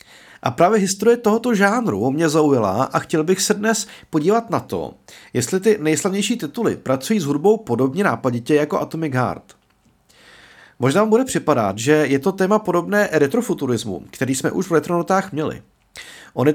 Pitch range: 140-205 Hz